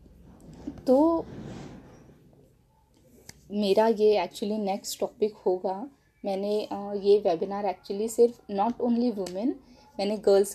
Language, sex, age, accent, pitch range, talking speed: English, female, 20-39, Indian, 195-230 Hz, 95 wpm